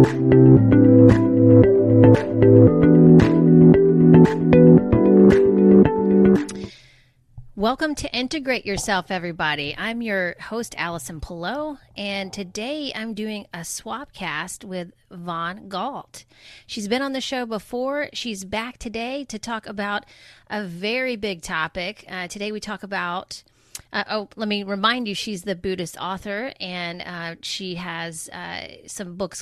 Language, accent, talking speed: English, American, 120 wpm